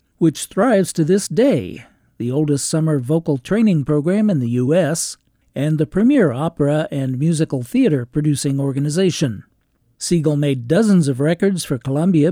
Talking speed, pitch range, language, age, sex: 140 wpm, 140-175 Hz, English, 50-69, male